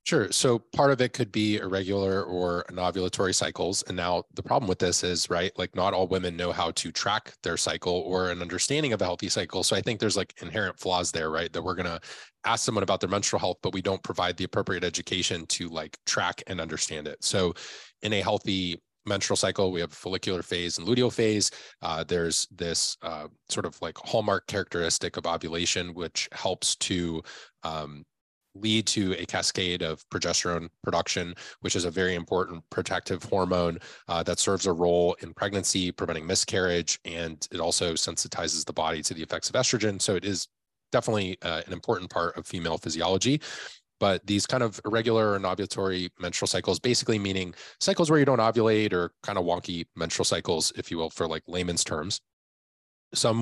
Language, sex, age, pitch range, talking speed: English, male, 20-39, 85-105 Hz, 195 wpm